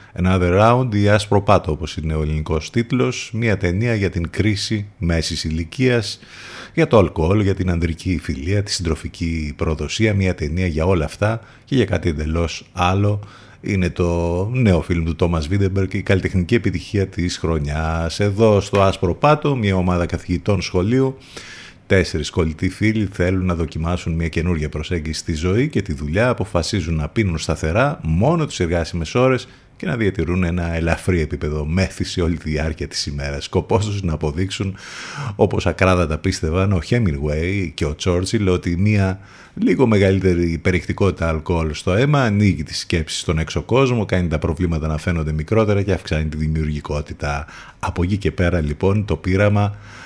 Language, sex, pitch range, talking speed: Greek, male, 80-105 Hz, 160 wpm